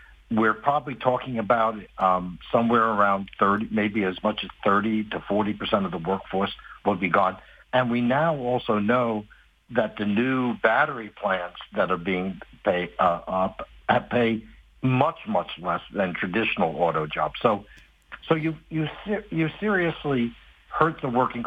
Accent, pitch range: American, 110-140 Hz